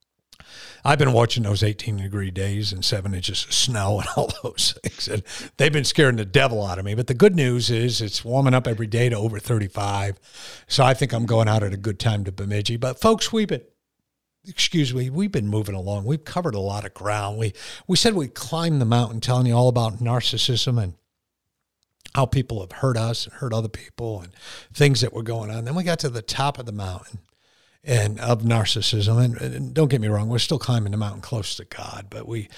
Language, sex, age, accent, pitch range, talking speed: English, male, 50-69, American, 105-125 Hz, 225 wpm